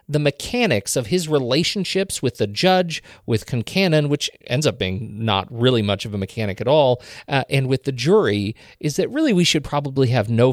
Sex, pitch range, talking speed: male, 115-150 Hz, 200 wpm